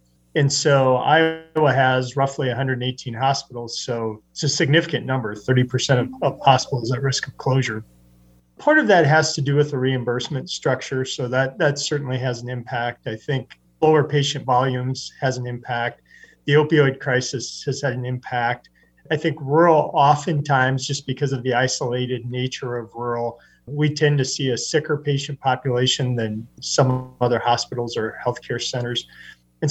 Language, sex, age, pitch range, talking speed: English, male, 40-59, 125-145 Hz, 160 wpm